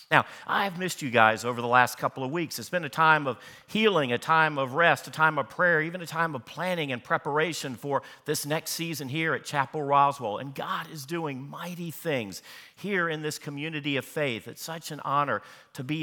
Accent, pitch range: American, 140-175 Hz